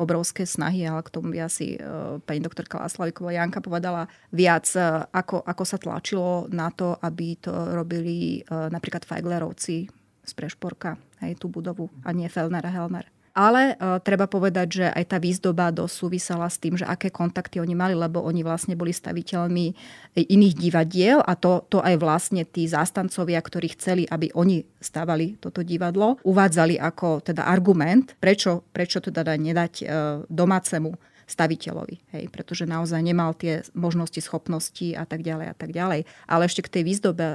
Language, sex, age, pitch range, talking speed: Slovak, female, 30-49, 165-185 Hz, 155 wpm